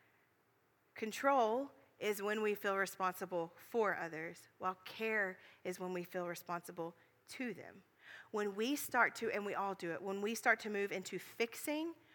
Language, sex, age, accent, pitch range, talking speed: English, female, 40-59, American, 210-260 Hz, 165 wpm